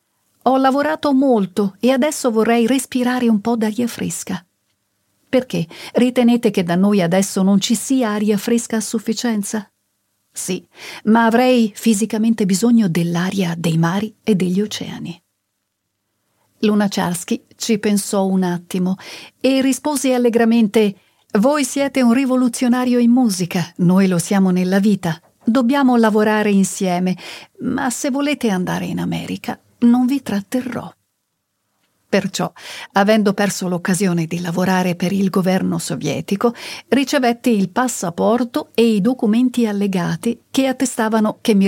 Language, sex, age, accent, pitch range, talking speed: Italian, female, 40-59, native, 185-240 Hz, 125 wpm